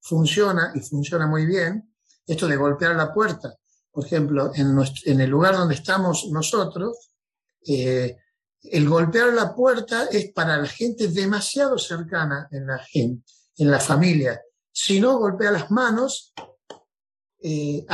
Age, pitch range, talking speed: 50-69, 150-215 Hz, 135 wpm